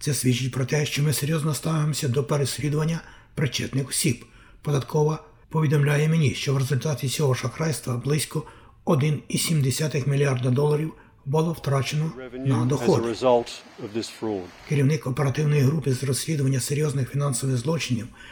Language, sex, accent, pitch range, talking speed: Ukrainian, male, native, 130-155 Hz, 120 wpm